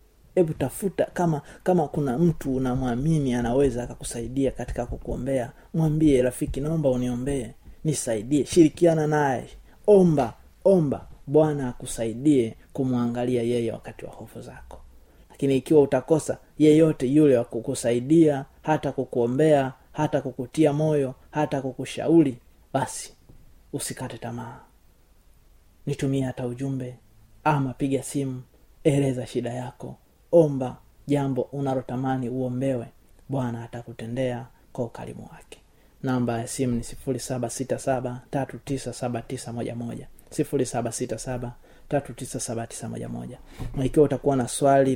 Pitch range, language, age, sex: 120-140 Hz, Swahili, 30-49, male